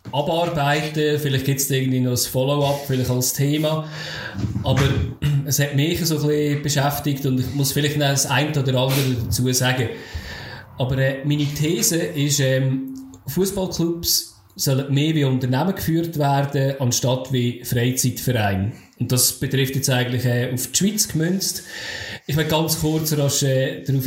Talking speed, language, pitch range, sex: 155 wpm, German, 125-145 Hz, male